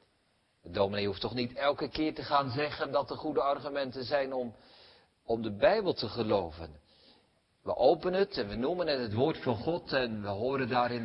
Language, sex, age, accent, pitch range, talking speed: Dutch, male, 50-69, Dutch, 110-160 Hz, 195 wpm